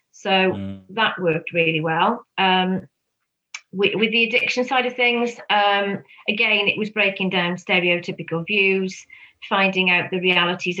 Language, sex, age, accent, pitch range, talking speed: English, female, 40-59, British, 170-195 Hz, 140 wpm